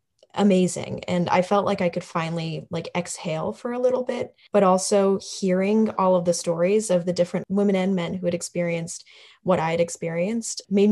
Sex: female